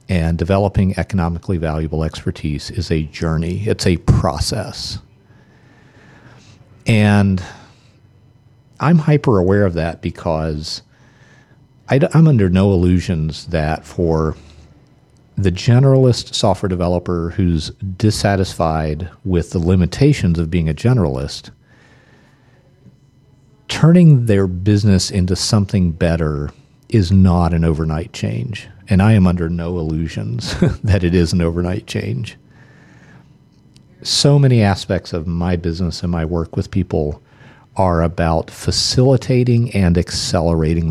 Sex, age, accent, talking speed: male, 50-69, American, 110 wpm